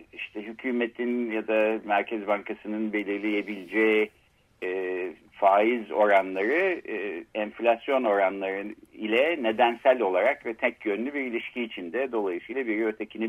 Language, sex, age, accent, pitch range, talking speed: Turkish, male, 60-79, native, 110-150 Hz, 105 wpm